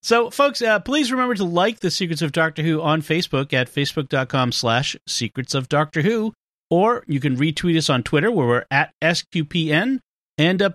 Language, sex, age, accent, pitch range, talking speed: English, male, 40-59, American, 125-170 Hz, 190 wpm